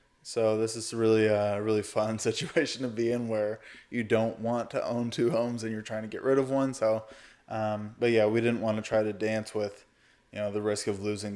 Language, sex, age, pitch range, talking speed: English, male, 20-39, 105-115 Hz, 240 wpm